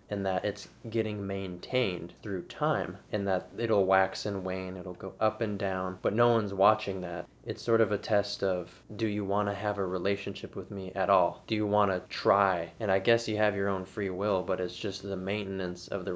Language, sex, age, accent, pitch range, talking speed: English, male, 20-39, American, 95-105 Hz, 225 wpm